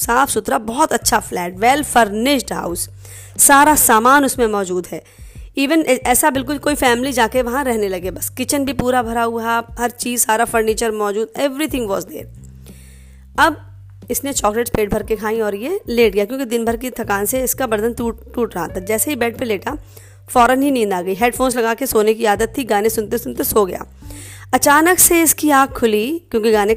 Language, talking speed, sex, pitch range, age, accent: Hindi, 200 wpm, female, 205-270 Hz, 20-39, native